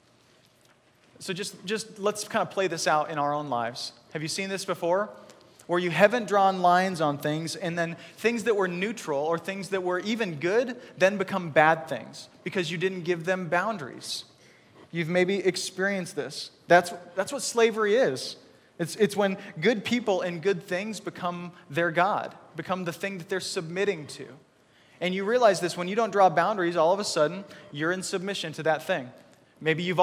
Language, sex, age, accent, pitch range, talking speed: English, male, 20-39, American, 170-200 Hz, 190 wpm